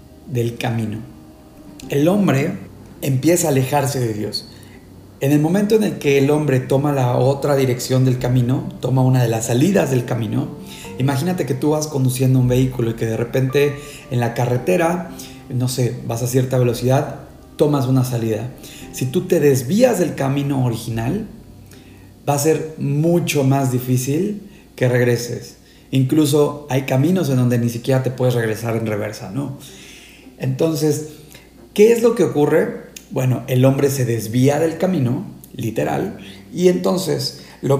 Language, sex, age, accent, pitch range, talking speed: Spanish, male, 40-59, Mexican, 125-150 Hz, 155 wpm